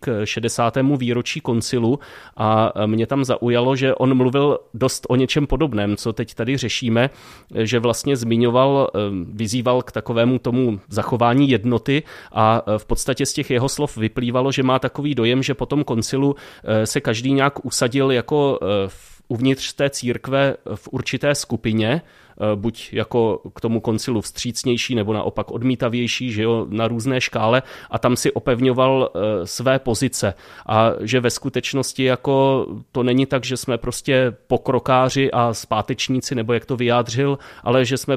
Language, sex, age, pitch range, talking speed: Czech, male, 30-49, 115-130 Hz, 150 wpm